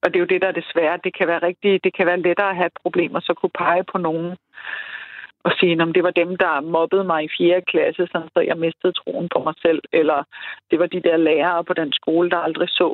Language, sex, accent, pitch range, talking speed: Danish, female, native, 165-180 Hz, 255 wpm